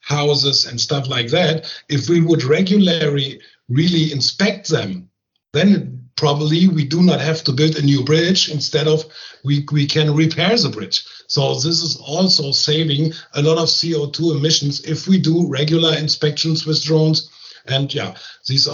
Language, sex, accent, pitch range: English, male, German, 130-160 Hz